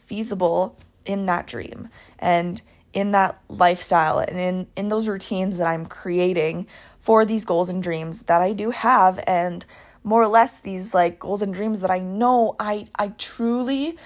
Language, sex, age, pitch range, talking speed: English, female, 20-39, 180-230 Hz, 170 wpm